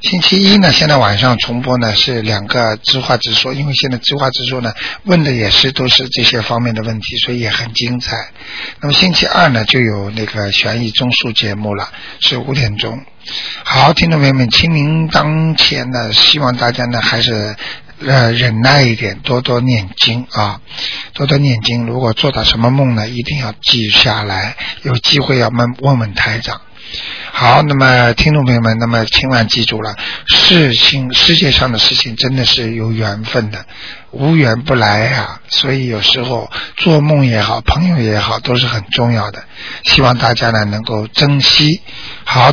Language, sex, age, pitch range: Chinese, male, 50-69, 110-135 Hz